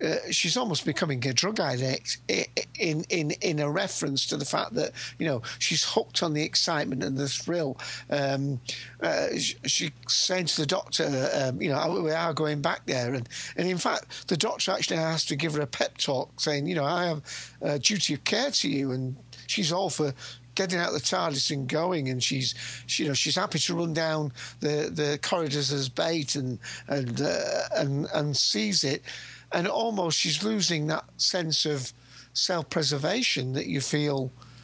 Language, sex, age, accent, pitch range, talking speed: English, male, 50-69, British, 135-165 Hz, 190 wpm